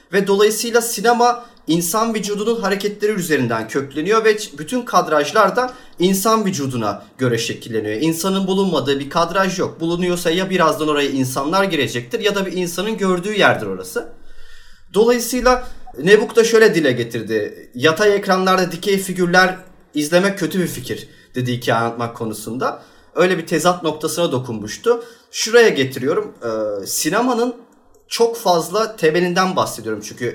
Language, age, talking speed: Turkish, 40-59, 130 wpm